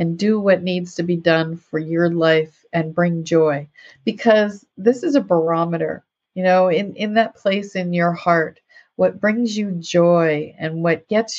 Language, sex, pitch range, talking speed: English, female, 165-195 Hz, 180 wpm